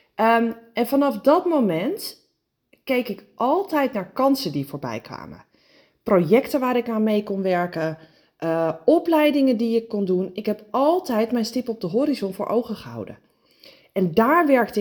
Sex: female